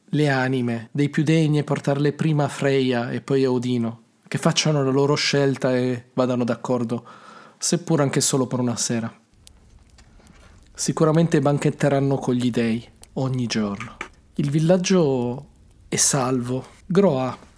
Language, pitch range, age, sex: Italian, 125-155 Hz, 40-59, male